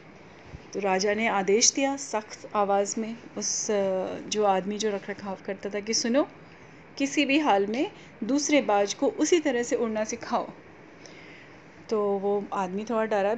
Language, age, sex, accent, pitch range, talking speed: Hindi, 30-49, female, native, 210-255 Hz, 155 wpm